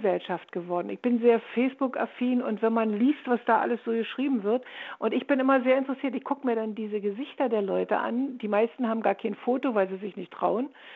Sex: female